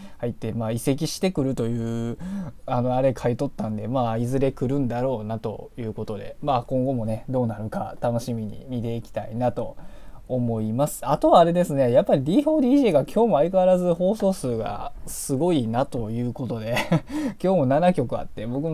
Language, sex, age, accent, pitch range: Japanese, male, 20-39, native, 110-140 Hz